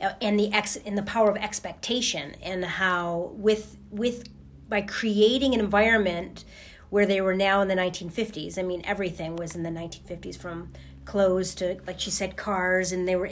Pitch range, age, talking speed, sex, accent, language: 180-220 Hz, 30-49, 190 wpm, female, American, English